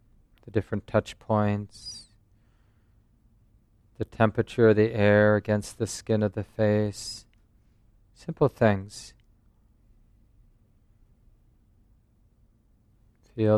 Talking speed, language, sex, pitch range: 80 wpm, English, male, 105-110 Hz